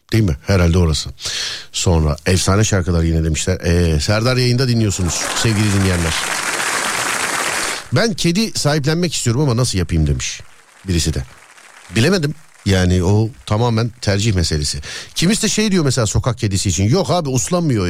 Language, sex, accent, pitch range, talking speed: Turkish, male, native, 100-160 Hz, 140 wpm